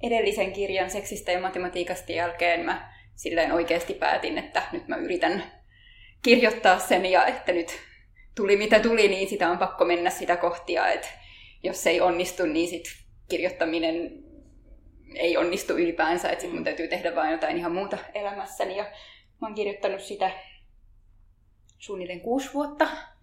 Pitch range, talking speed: 170-205 Hz, 145 wpm